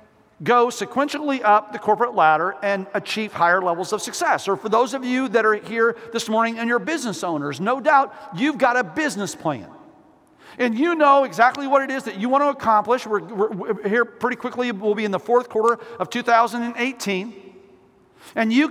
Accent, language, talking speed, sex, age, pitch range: American, English, 195 wpm, male, 50-69, 210-260 Hz